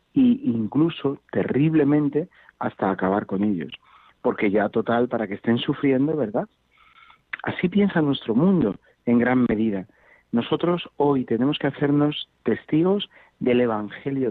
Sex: male